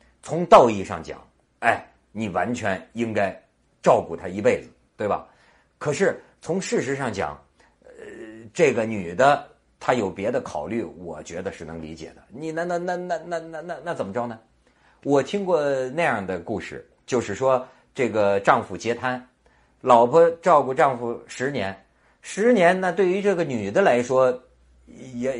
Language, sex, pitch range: Chinese, male, 105-150 Hz